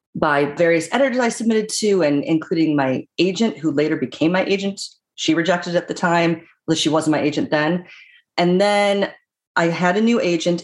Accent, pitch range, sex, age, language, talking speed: American, 150-190 Hz, female, 30-49, English, 185 wpm